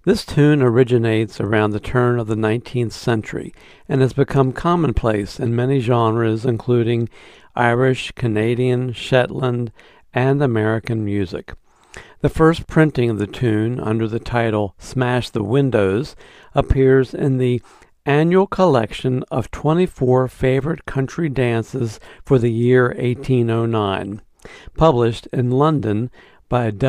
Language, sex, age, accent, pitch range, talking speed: English, male, 60-79, American, 115-135 Hz, 120 wpm